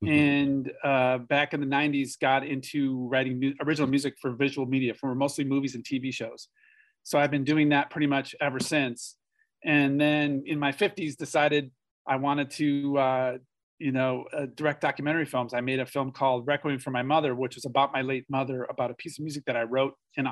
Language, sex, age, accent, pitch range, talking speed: English, male, 40-59, American, 125-145 Hz, 205 wpm